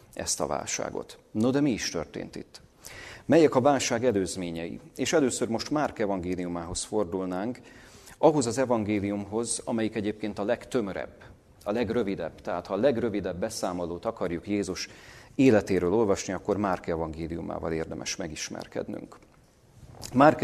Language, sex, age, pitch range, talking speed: Hungarian, male, 40-59, 90-110 Hz, 125 wpm